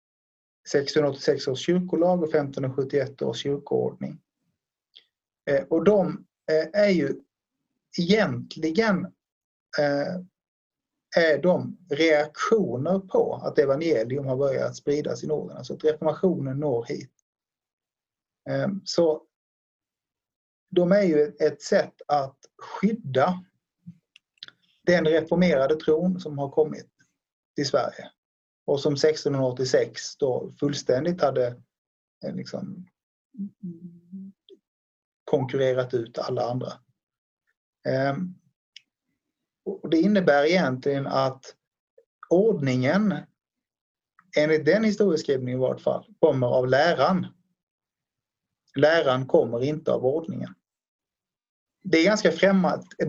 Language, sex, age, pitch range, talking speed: Swedish, male, 30-49, 140-185 Hz, 90 wpm